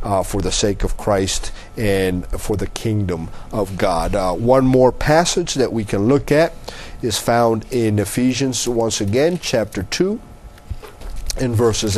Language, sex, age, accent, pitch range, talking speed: English, male, 50-69, American, 100-125 Hz, 155 wpm